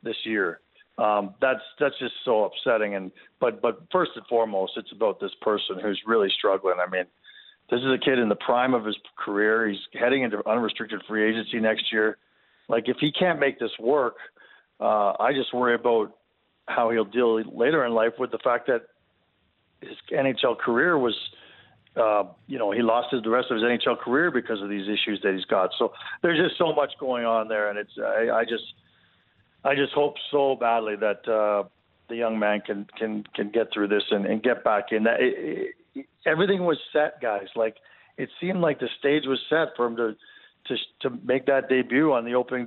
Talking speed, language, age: 205 wpm, English, 50-69